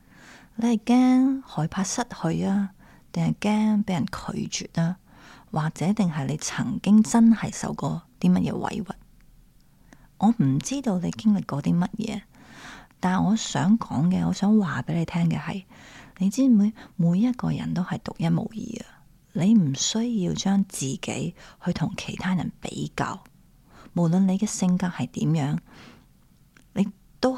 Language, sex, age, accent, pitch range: Chinese, female, 30-49, native, 170-220 Hz